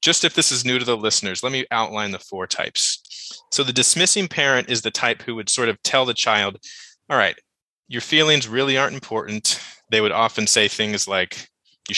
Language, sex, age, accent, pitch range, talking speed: English, male, 20-39, American, 105-125 Hz, 210 wpm